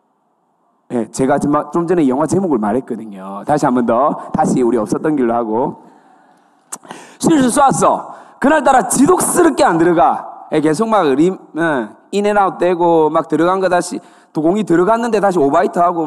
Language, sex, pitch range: Korean, male, 170-260 Hz